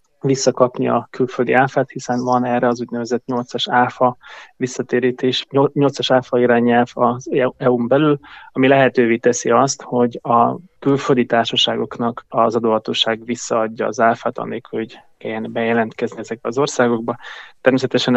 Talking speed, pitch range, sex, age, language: 125 wpm, 115-125 Hz, male, 20-39, Hungarian